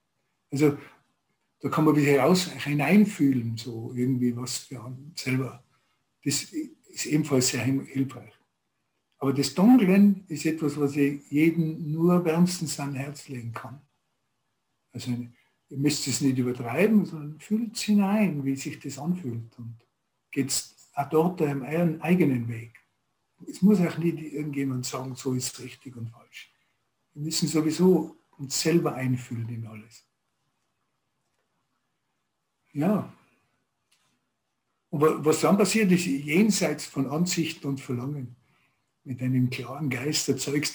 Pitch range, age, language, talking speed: 130-160 Hz, 60-79, German, 130 wpm